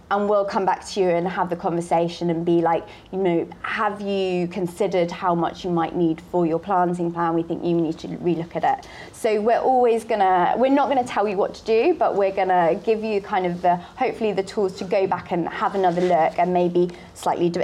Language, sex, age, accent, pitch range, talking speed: English, female, 20-39, British, 170-215 Hz, 235 wpm